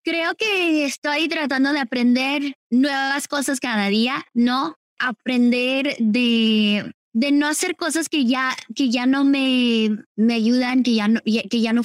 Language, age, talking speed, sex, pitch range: Spanish, 20-39, 160 wpm, female, 240-295 Hz